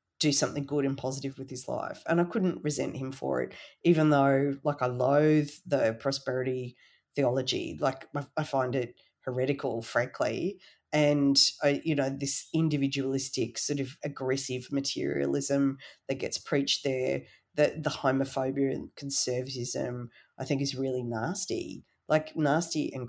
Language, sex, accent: English, female, Australian